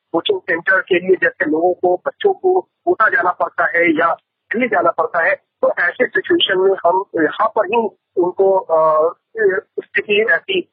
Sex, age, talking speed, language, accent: male, 50-69, 160 wpm, Hindi, native